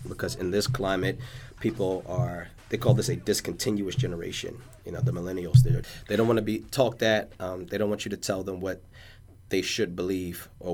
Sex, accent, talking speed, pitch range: male, American, 195 wpm, 90-105 Hz